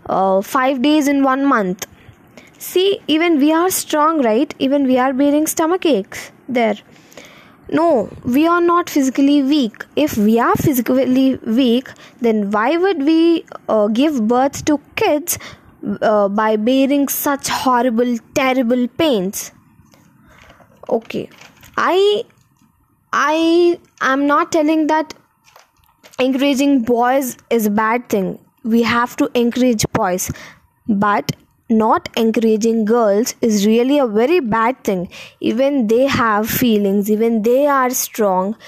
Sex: female